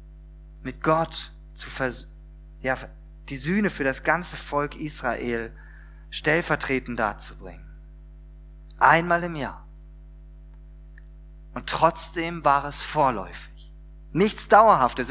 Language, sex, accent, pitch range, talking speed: German, male, German, 120-185 Hz, 95 wpm